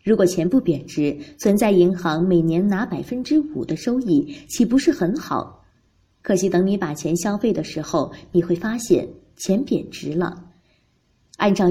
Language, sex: Chinese, female